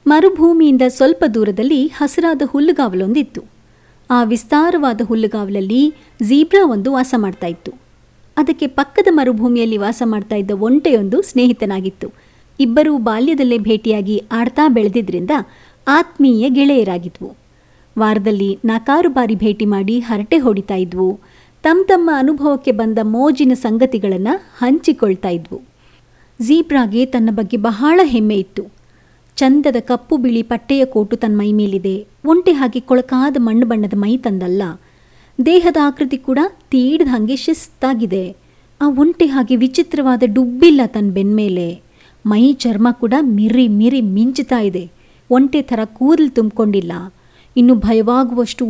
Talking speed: 110 wpm